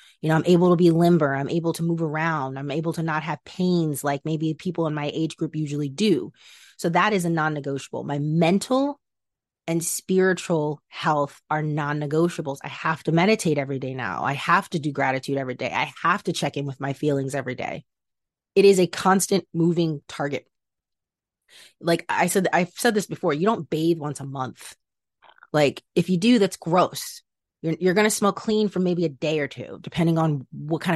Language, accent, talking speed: English, American, 200 wpm